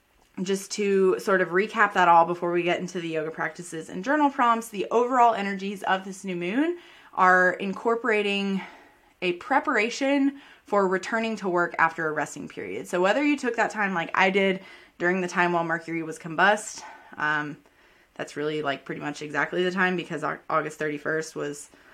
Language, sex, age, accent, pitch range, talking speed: English, female, 20-39, American, 165-215 Hz, 180 wpm